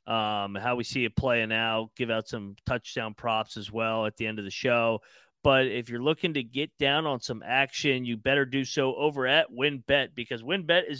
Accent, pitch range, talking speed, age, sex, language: American, 120-145 Hz, 220 wpm, 30-49, male, English